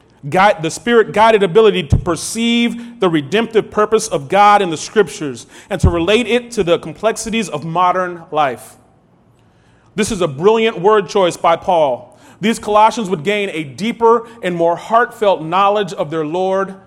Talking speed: 155 wpm